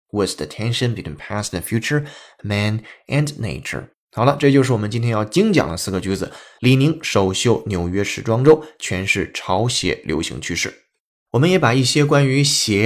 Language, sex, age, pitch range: Chinese, male, 20-39, 95-135 Hz